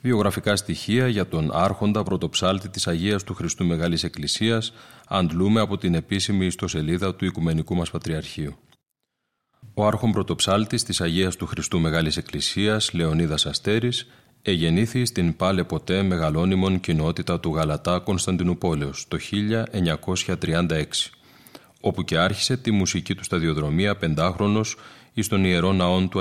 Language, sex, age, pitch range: Greek, male, 30-49, 85-110 Hz